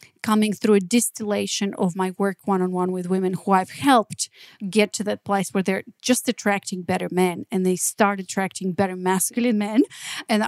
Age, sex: 40-59, female